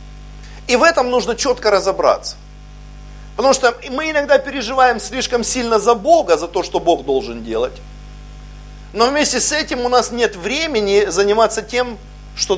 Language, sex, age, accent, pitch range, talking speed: Russian, male, 50-69, native, 160-240 Hz, 155 wpm